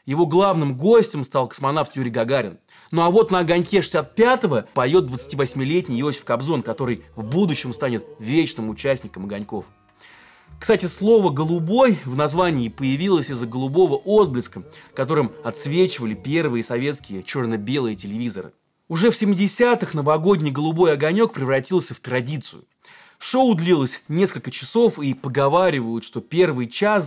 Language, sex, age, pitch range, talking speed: Russian, male, 20-39, 125-180 Hz, 125 wpm